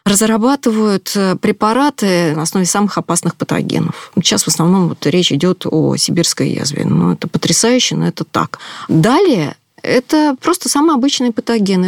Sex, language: female, Russian